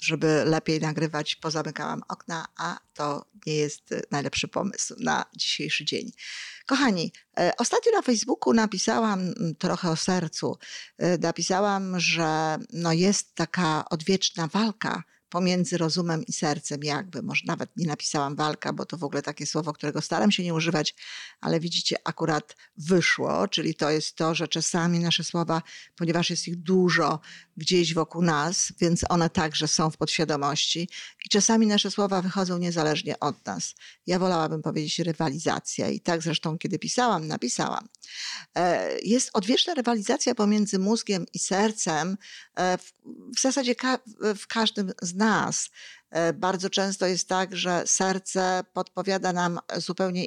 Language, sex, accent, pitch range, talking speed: Polish, female, native, 160-200 Hz, 135 wpm